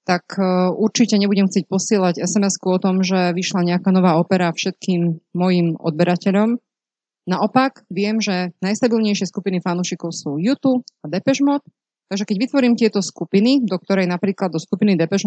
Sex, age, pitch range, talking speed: female, 30-49, 170-215 Hz, 150 wpm